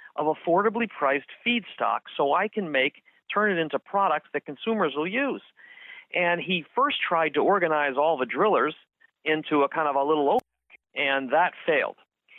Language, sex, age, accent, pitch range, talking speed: English, male, 50-69, American, 135-210 Hz, 170 wpm